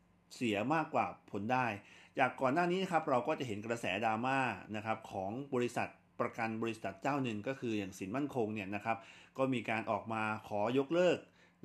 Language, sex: Thai, male